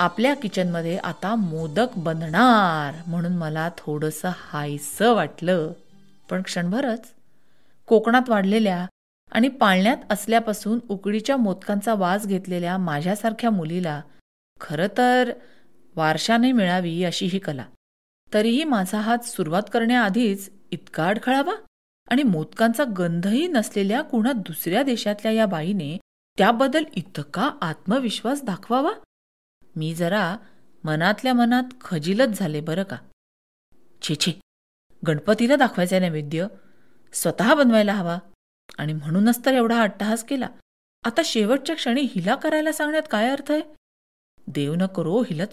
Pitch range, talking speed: 170-235 Hz, 110 wpm